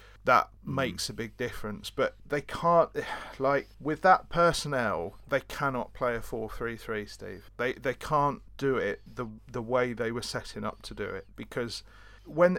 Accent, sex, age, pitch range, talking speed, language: British, male, 40-59, 115-140 Hz, 175 wpm, English